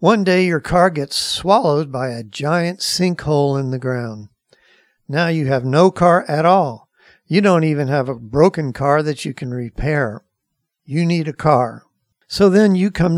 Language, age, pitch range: English, 60-79, 135-175 Hz